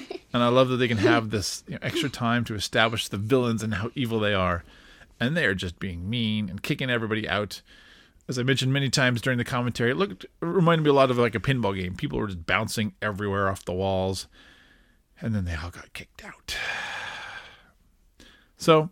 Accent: American